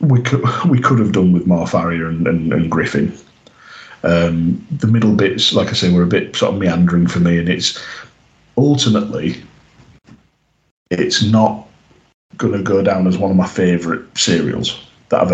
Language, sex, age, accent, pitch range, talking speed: English, male, 40-59, British, 90-115 Hz, 170 wpm